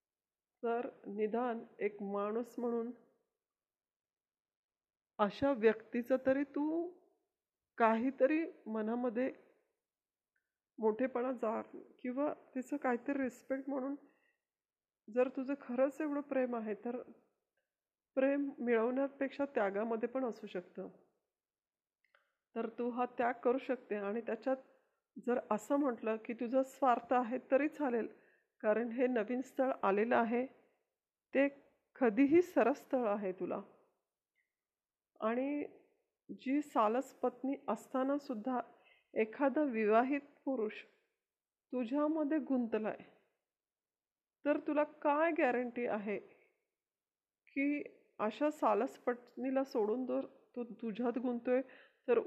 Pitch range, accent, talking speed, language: 235-290 Hz, native, 100 wpm, Marathi